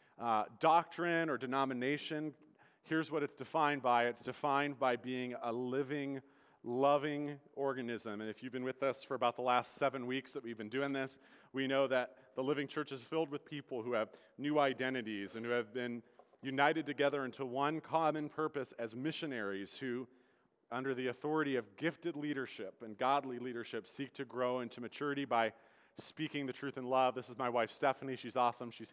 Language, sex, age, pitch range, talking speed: English, male, 30-49, 125-145 Hz, 185 wpm